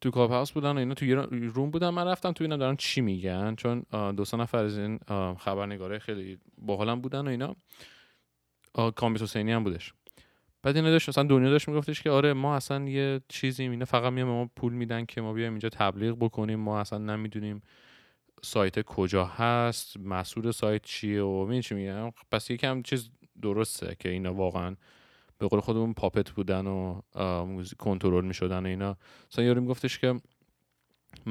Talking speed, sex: 165 wpm, male